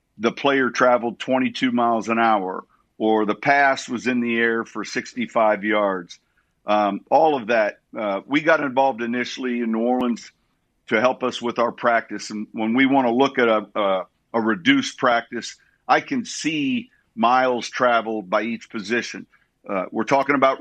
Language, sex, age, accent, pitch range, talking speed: English, male, 50-69, American, 115-140 Hz, 170 wpm